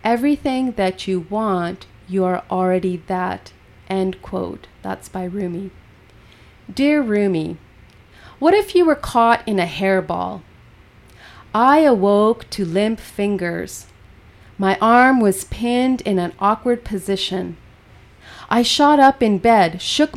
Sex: female